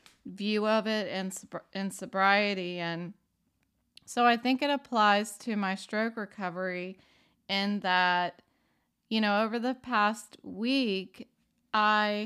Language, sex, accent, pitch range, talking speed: English, female, American, 185-215 Hz, 120 wpm